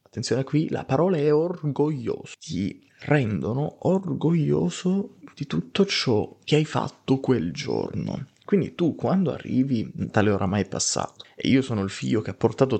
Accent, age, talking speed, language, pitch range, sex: native, 30-49, 150 wpm, Italian, 120-160 Hz, male